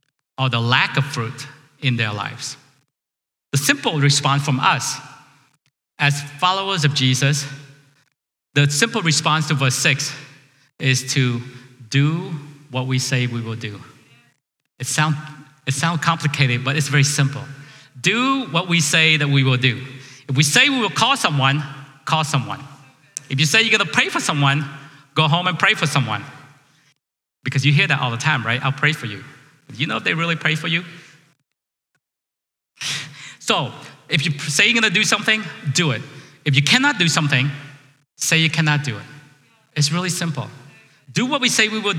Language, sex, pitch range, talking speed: English, male, 135-155 Hz, 175 wpm